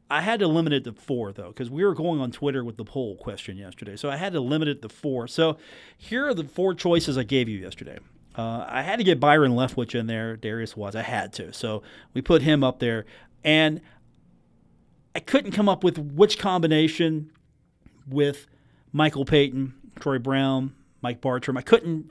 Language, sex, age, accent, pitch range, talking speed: English, male, 40-59, American, 120-165 Hz, 200 wpm